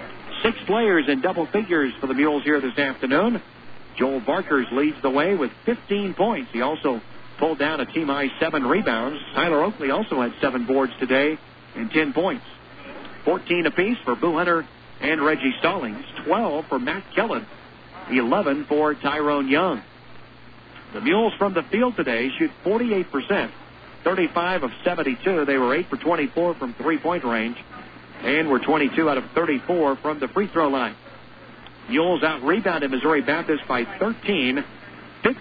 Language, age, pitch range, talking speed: English, 50-69, 130-165 Hz, 150 wpm